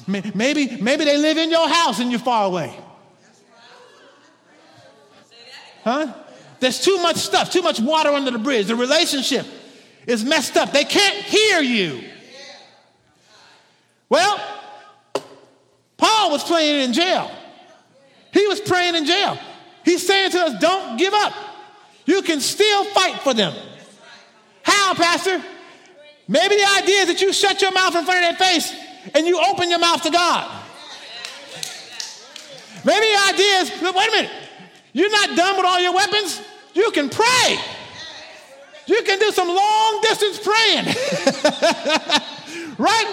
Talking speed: 145 wpm